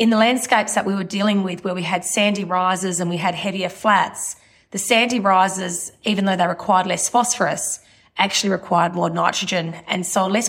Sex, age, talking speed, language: female, 20-39, 195 wpm, English